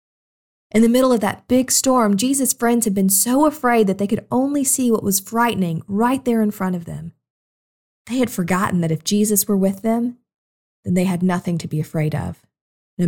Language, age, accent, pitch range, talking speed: English, 40-59, American, 160-205 Hz, 205 wpm